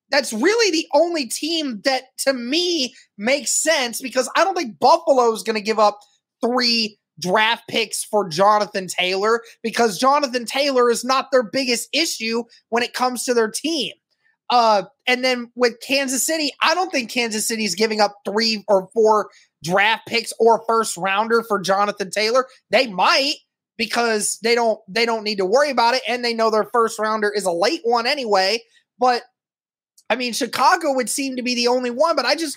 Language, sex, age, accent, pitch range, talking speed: English, male, 20-39, American, 220-280 Hz, 190 wpm